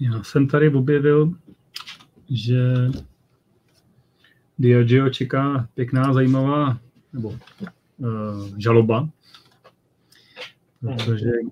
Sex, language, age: male, Czech, 30-49